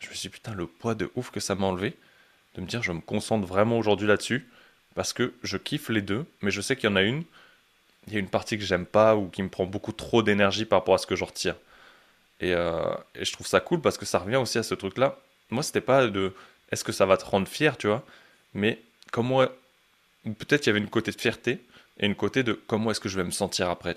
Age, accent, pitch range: 20-39, French, 90-110 Hz